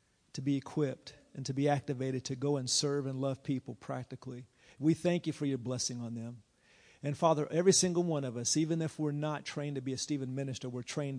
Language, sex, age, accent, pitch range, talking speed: English, male, 50-69, American, 130-160 Hz, 225 wpm